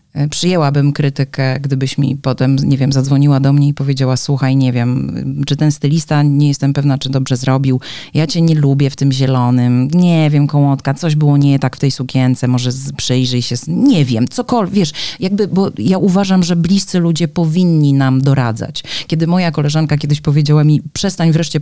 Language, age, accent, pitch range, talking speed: Polish, 30-49, native, 140-175 Hz, 190 wpm